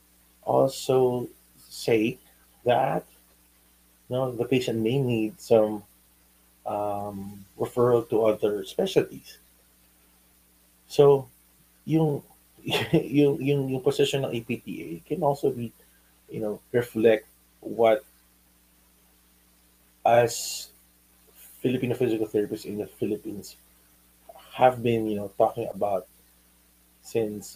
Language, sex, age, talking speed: English, male, 30-49, 95 wpm